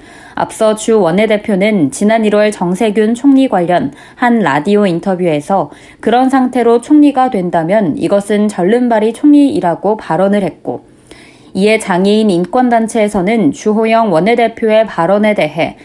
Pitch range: 190-235 Hz